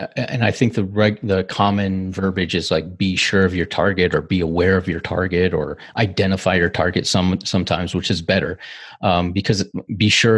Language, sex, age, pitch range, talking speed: English, male, 30-49, 95-110 Hz, 195 wpm